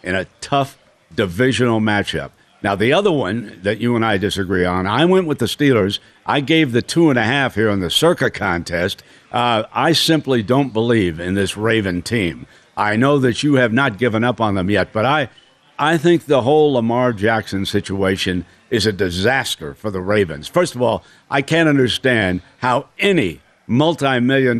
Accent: American